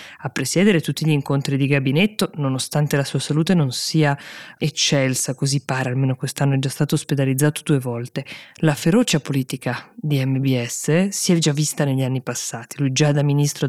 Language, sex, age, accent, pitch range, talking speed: Italian, female, 20-39, native, 140-170 Hz, 175 wpm